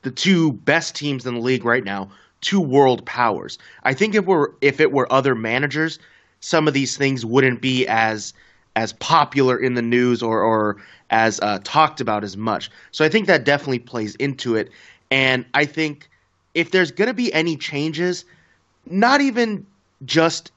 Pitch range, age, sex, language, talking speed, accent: 120-150 Hz, 20-39, male, English, 180 wpm, American